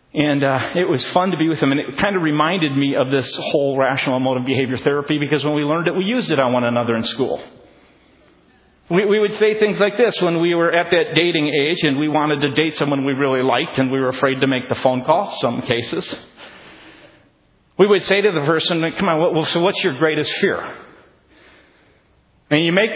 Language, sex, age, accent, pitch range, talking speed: English, male, 50-69, American, 150-240 Hz, 220 wpm